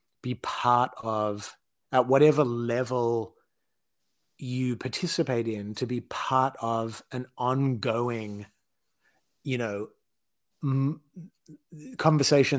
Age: 30-49